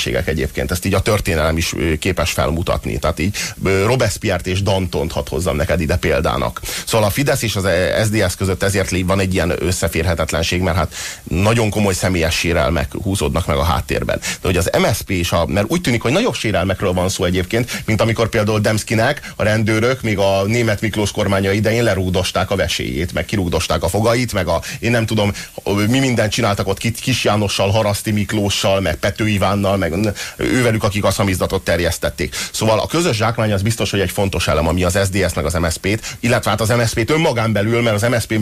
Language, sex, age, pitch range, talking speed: Hungarian, male, 30-49, 95-110 Hz, 185 wpm